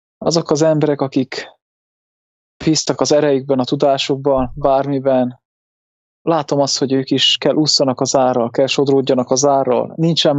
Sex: male